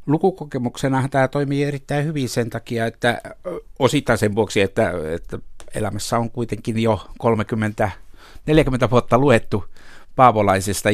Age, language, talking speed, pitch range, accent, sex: 60-79, Finnish, 115 wpm, 110-125 Hz, native, male